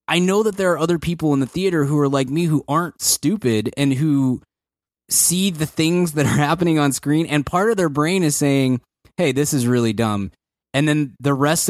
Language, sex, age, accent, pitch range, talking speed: English, male, 20-39, American, 125-160 Hz, 220 wpm